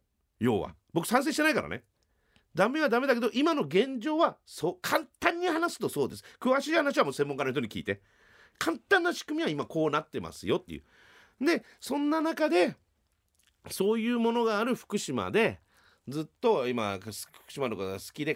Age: 40-59